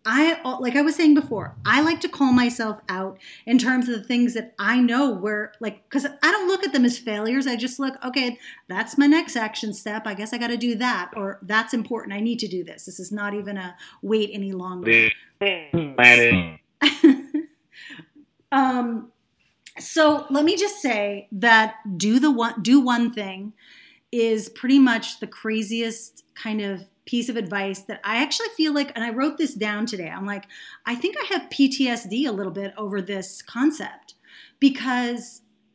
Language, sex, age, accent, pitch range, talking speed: English, female, 30-49, American, 215-280 Hz, 185 wpm